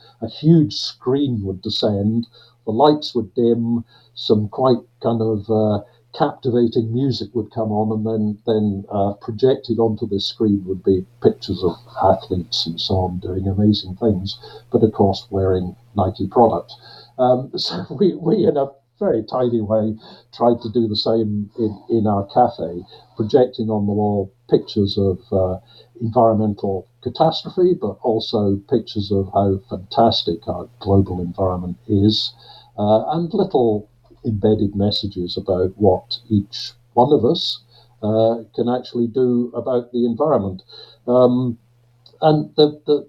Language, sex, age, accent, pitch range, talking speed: English, male, 50-69, British, 105-120 Hz, 140 wpm